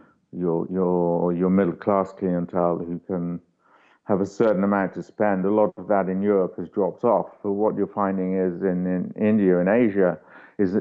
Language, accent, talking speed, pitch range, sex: English, British, 180 wpm, 90-100 Hz, male